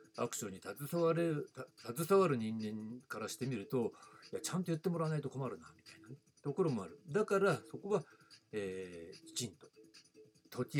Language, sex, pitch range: Japanese, male, 125-185 Hz